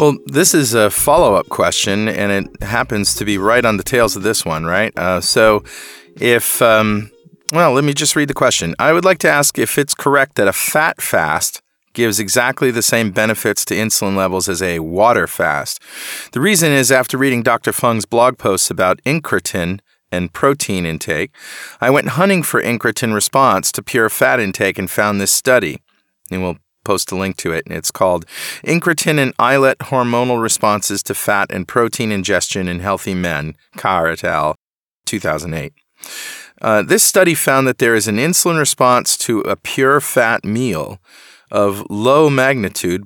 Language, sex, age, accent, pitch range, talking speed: English, male, 30-49, American, 100-130 Hz, 175 wpm